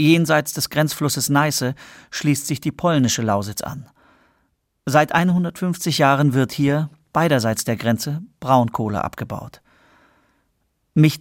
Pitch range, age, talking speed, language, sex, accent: 120-155 Hz, 40-59, 110 wpm, German, male, German